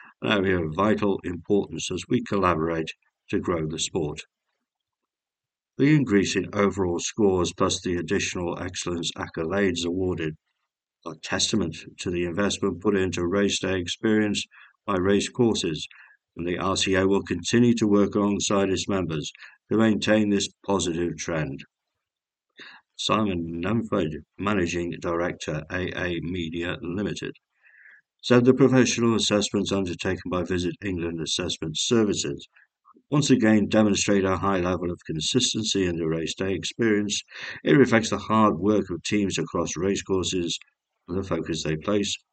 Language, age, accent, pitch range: English, 60-79, British, 85-105 Hz